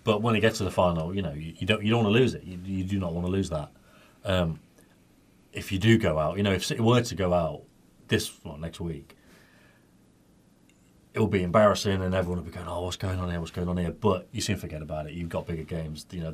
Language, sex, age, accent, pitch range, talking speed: English, male, 30-49, British, 85-100 Hz, 270 wpm